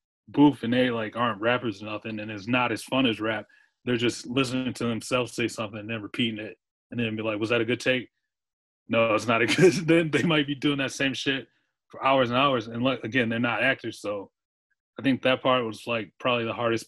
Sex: male